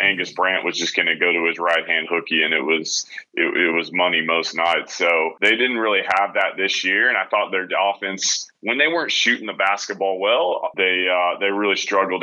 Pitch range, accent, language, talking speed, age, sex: 90-105 Hz, American, English, 220 wpm, 30-49, male